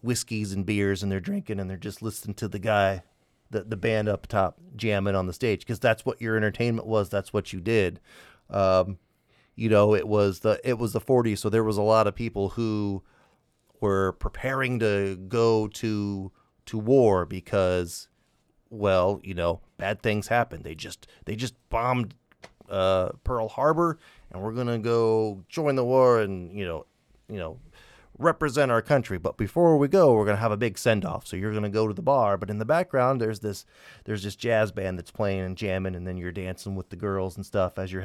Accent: American